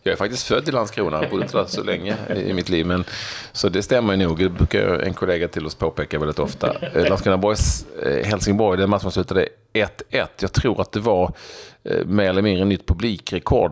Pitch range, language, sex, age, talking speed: 75-95 Hz, Swedish, male, 40-59, 200 wpm